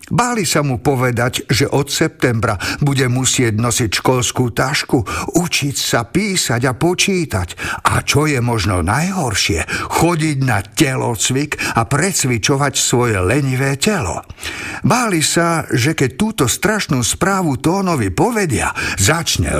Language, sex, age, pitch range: Slovak, male, 50-69, 115-160 Hz